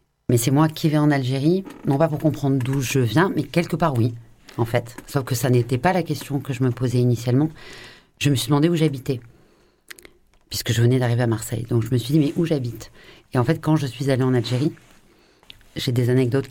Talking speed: 235 wpm